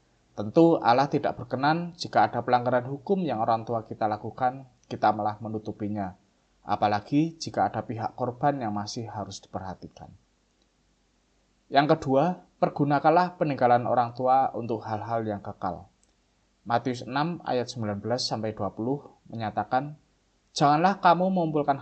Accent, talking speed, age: native, 120 wpm, 20-39